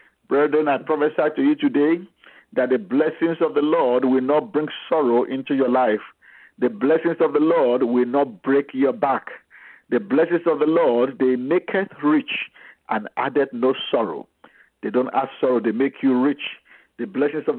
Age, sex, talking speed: 50-69, male, 175 wpm